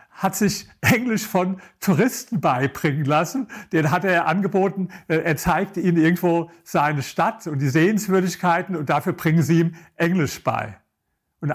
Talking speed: 145 wpm